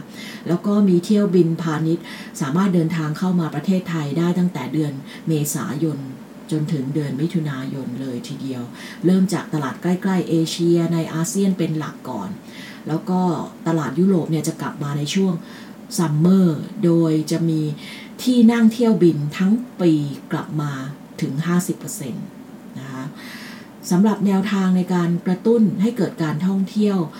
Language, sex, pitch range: English, female, 160-215 Hz